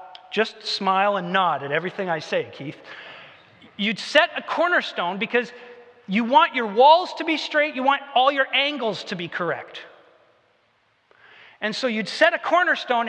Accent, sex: American, male